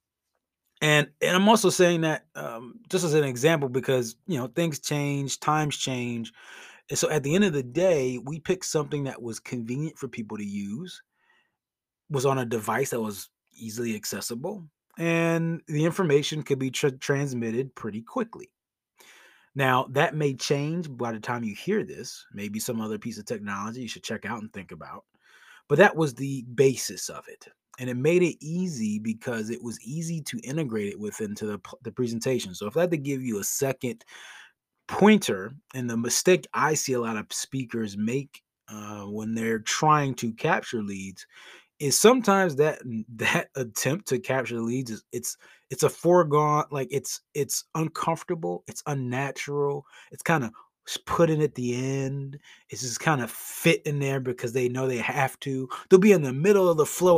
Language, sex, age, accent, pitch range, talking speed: English, male, 20-39, American, 120-155 Hz, 185 wpm